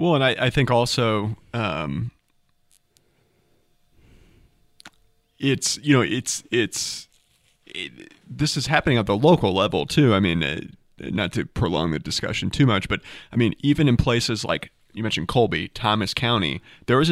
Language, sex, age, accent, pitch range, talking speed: English, male, 30-49, American, 100-145 Hz, 155 wpm